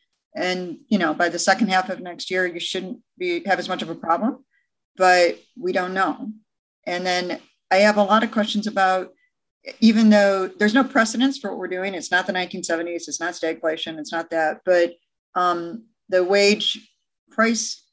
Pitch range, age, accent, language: 170-215 Hz, 50-69, American, English